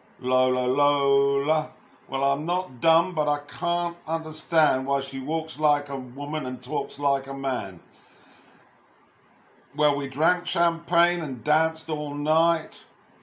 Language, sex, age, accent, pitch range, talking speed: English, male, 50-69, British, 135-155 Hz, 130 wpm